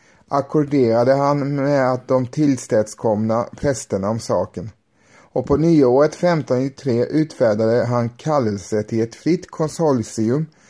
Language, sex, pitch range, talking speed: Swedish, male, 115-150 Hz, 110 wpm